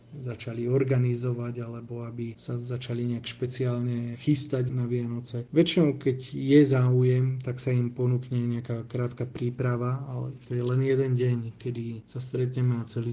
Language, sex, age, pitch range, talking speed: Slovak, male, 20-39, 120-130 Hz, 150 wpm